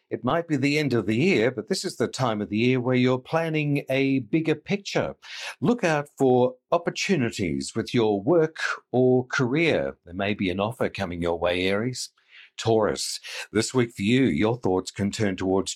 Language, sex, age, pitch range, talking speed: English, male, 50-69, 105-150 Hz, 190 wpm